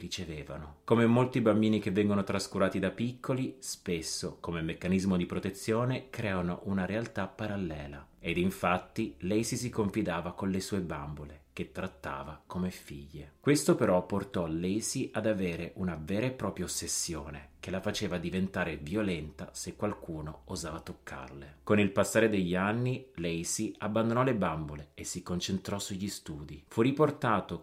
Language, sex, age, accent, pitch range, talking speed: Italian, male, 30-49, native, 85-110 Hz, 145 wpm